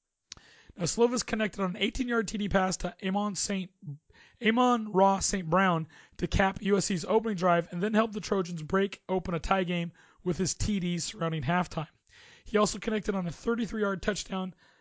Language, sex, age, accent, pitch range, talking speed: English, male, 30-49, American, 175-210 Hz, 160 wpm